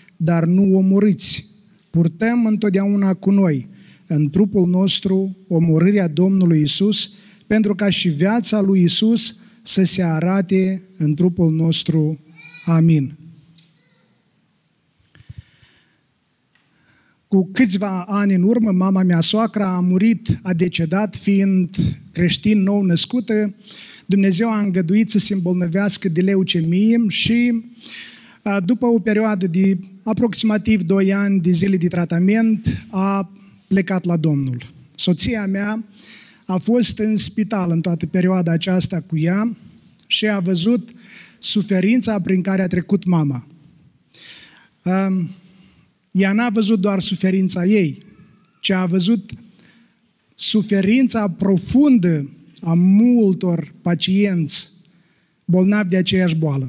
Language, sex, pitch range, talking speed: Romanian, male, 175-210 Hz, 110 wpm